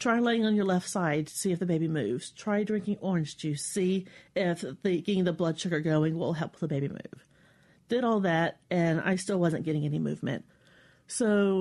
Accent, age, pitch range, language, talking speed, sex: American, 40-59, 165-195 Hz, English, 200 wpm, female